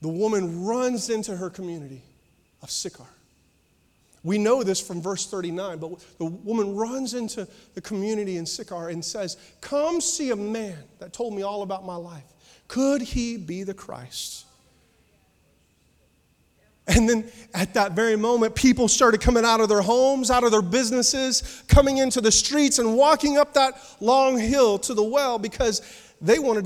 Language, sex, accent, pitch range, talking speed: English, male, American, 155-225 Hz, 165 wpm